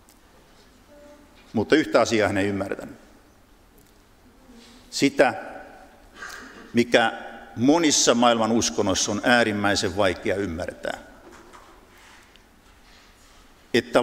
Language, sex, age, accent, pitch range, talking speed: Finnish, male, 60-79, native, 100-125 Hz, 70 wpm